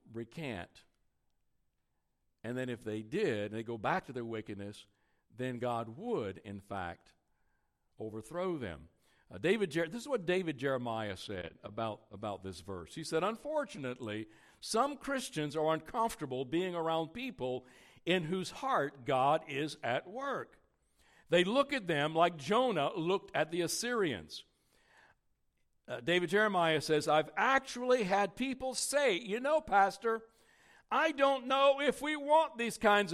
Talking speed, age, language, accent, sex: 140 wpm, 60-79, English, American, male